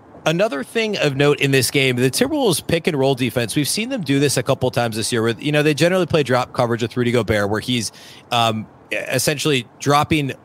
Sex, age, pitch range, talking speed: male, 30-49, 120-150 Hz, 240 wpm